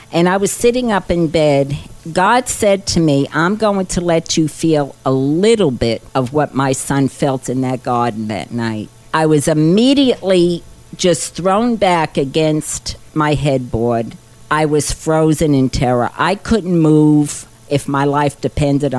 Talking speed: 160 wpm